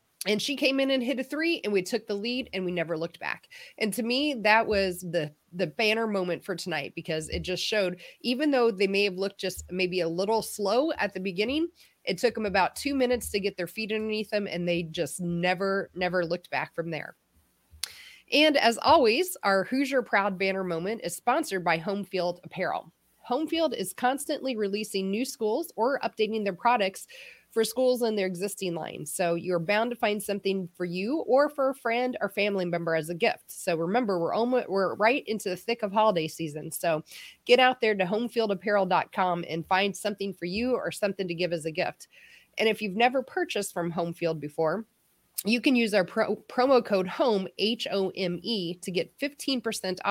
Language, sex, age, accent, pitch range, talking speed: English, female, 30-49, American, 180-240 Hz, 200 wpm